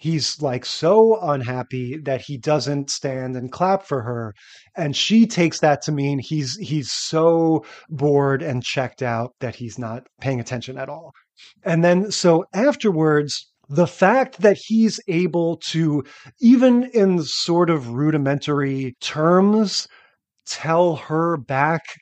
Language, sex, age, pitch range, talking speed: English, male, 30-49, 135-185 Hz, 140 wpm